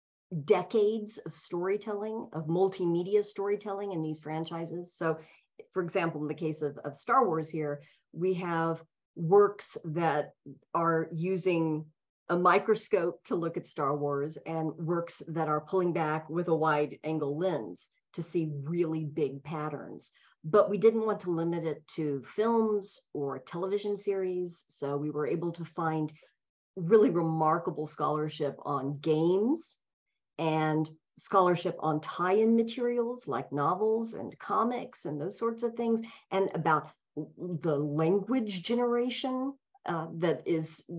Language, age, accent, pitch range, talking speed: English, 40-59, American, 155-195 Hz, 140 wpm